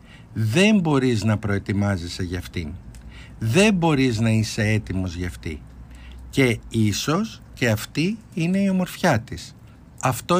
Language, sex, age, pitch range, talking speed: Greek, male, 60-79, 110-150 Hz, 125 wpm